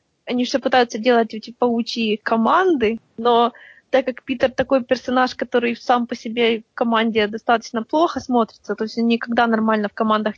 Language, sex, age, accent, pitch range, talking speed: Russian, female, 20-39, native, 225-260 Hz, 170 wpm